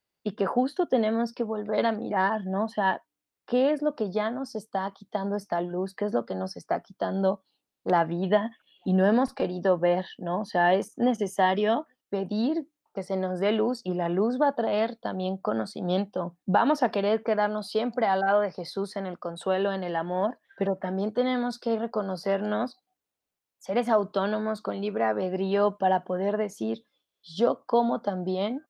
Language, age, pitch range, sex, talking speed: Spanish, 20-39, 180-215 Hz, female, 180 wpm